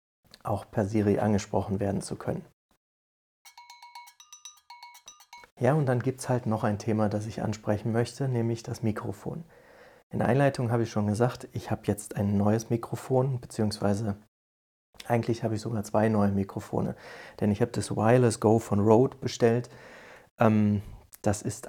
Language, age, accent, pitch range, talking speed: German, 30-49, German, 105-120 Hz, 150 wpm